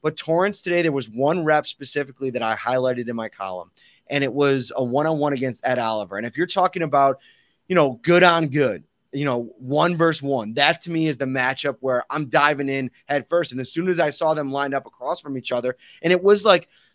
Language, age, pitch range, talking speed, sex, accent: English, 30-49, 125-155 Hz, 235 wpm, male, American